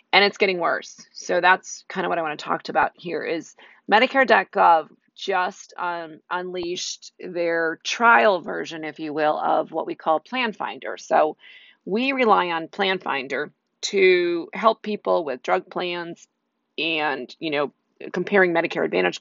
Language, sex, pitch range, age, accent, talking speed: English, female, 165-205 Hz, 40-59, American, 155 wpm